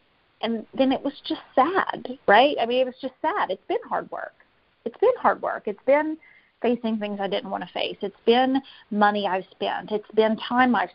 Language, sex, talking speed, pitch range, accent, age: English, female, 215 wpm, 200-245 Hz, American, 30-49